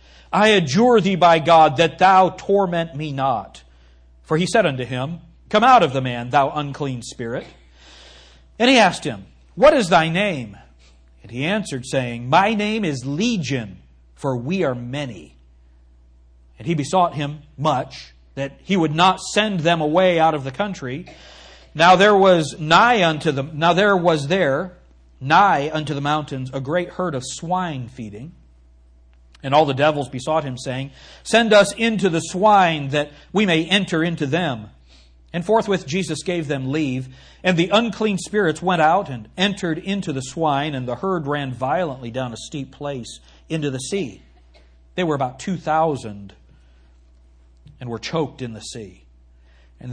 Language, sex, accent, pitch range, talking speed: English, male, American, 120-180 Hz, 165 wpm